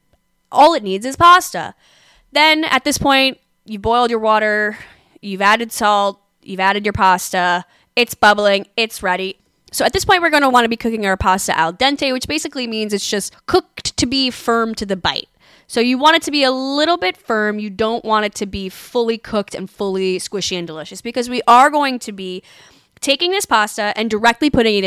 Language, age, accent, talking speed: English, 10-29, American, 210 wpm